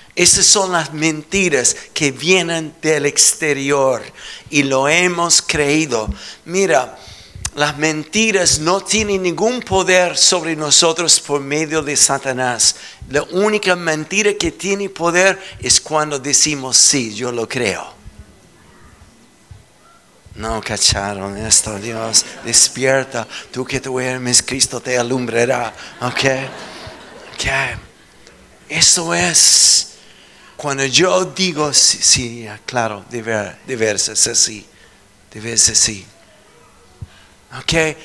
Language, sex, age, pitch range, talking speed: Spanish, male, 60-79, 125-170 Hz, 110 wpm